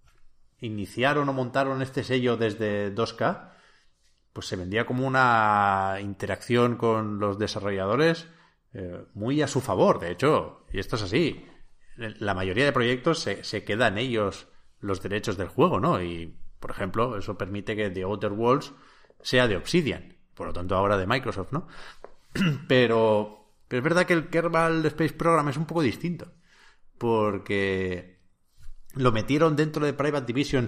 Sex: male